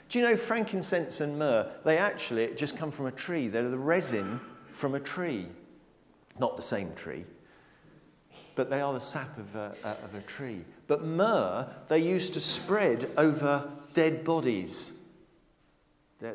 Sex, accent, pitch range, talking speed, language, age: male, British, 125-185 Hz, 155 wpm, English, 50-69